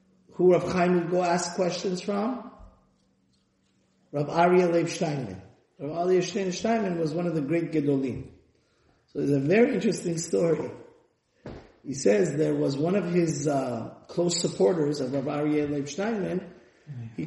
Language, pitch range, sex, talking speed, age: English, 160-215 Hz, male, 155 wpm, 30-49